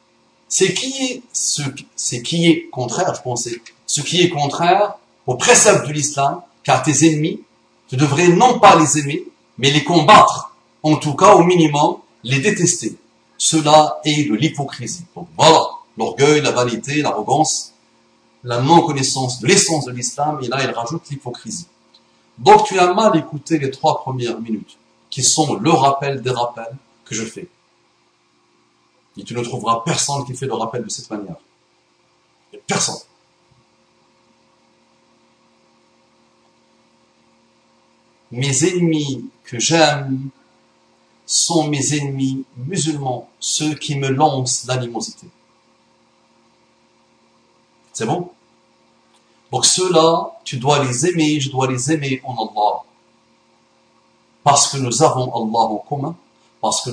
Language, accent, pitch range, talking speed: French, French, 130-170 Hz, 130 wpm